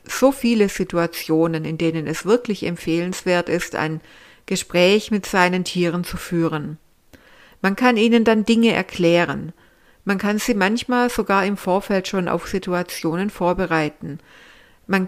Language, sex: German, female